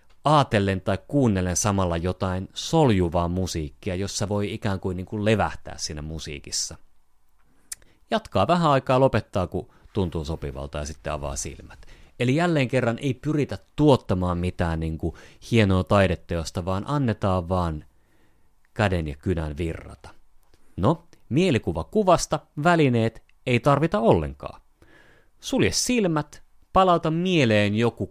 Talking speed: 120 wpm